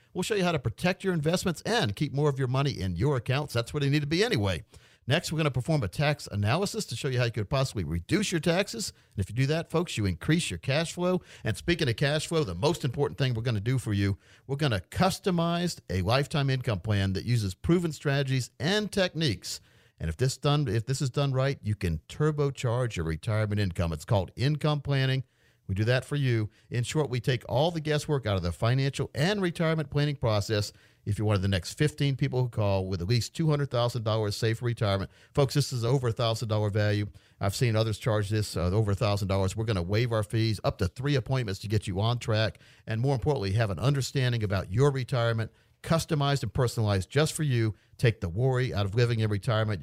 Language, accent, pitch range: English, American, 105-145 Hz